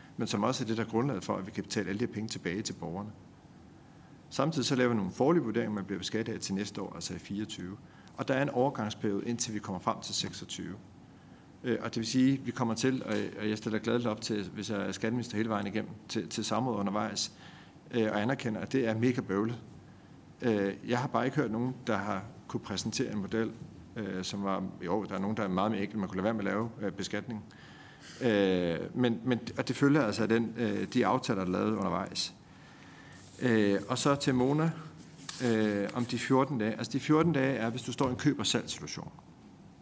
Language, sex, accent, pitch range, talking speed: Danish, male, native, 105-125 Hz, 220 wpm